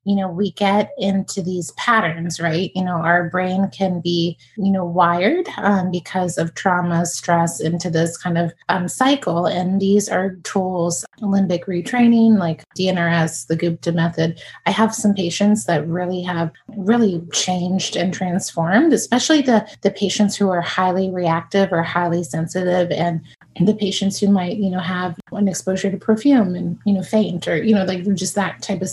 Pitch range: 175-205 Hz